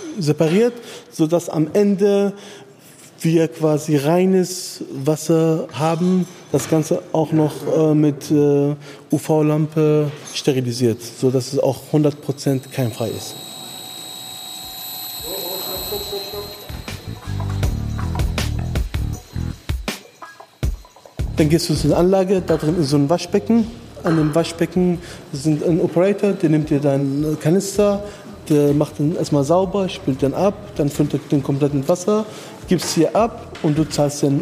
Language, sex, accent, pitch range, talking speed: German, male, German, 140-170 Hz, 125 wpm